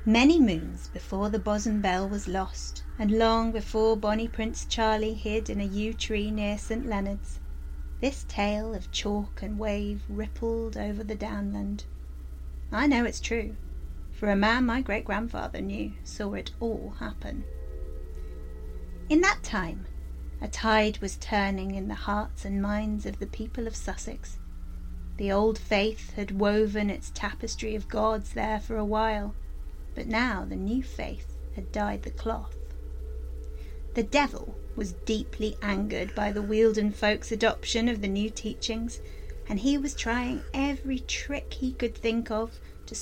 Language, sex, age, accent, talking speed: English, female, 30-49, British, 150 wpm